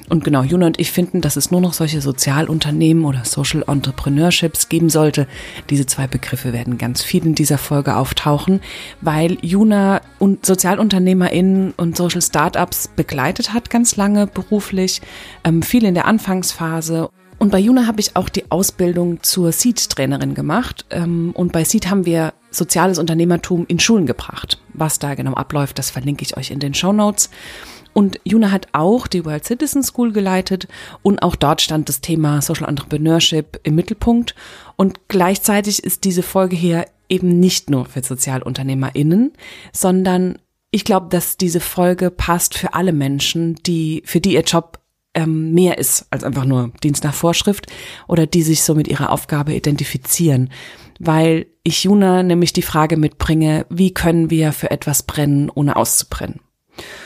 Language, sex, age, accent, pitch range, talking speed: German, female, 30-49, German, 150-185 Hz, 165 wpm